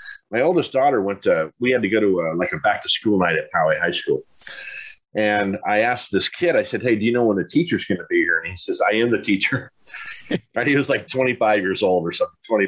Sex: male